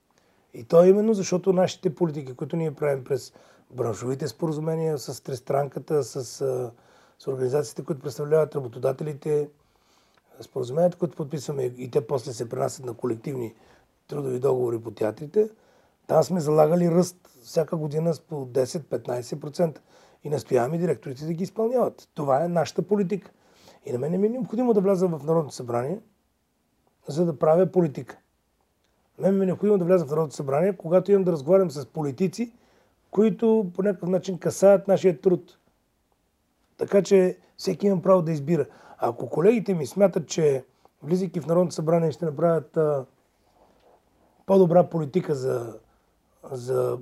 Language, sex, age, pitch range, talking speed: Bulgarian, male, 40-59, 140-185 Hz, 145 wpm